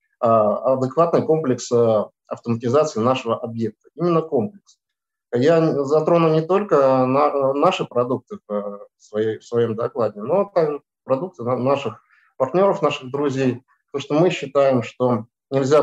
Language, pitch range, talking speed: Russian, 115-155 Hz, 115 wpm